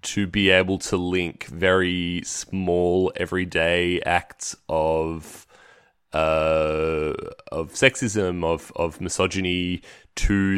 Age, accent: 20-39, Australian